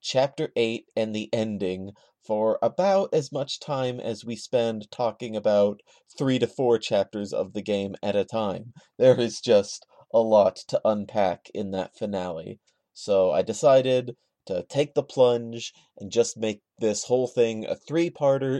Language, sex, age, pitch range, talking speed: English, male, 30-49, 110-135 Hz, 160 wpm